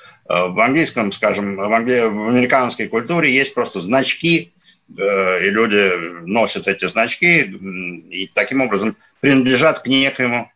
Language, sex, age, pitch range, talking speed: Russian, male, 60-79, 115-165 Hz, 115 wpm